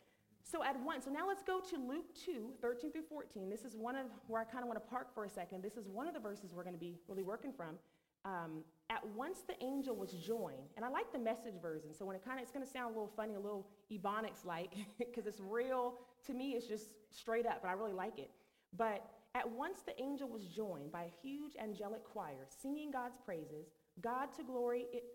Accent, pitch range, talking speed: American, 190-270 Hz, 235 wpm